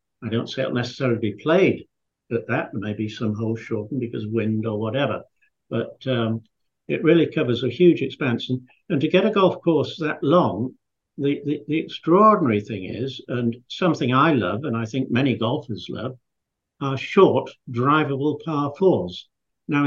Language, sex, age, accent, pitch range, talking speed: English, male, 60-79, British, 115-150 Hz, 175 wpm